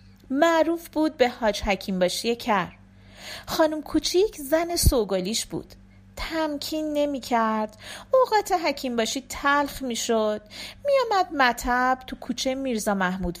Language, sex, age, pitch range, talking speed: Persian, female, 40-59, 210-315 Hz, 115 wpm